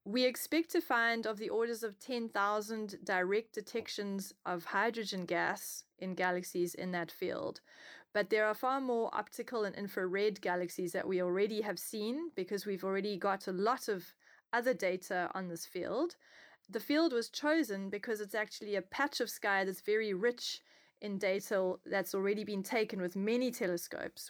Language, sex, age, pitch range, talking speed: English, female, 30-49, 185-220 Hz, 170 wpm